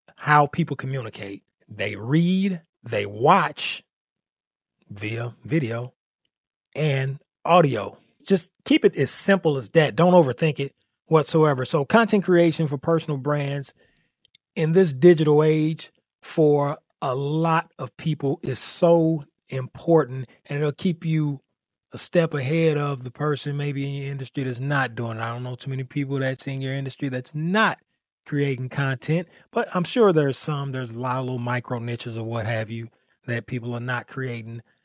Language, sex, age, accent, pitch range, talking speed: English, male, 30-49, American, 130-165 Hz, 160 wpm